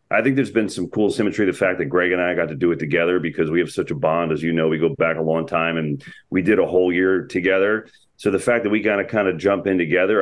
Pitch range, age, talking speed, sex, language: 90-120 Hz, 40-59, 305 wpm, male, English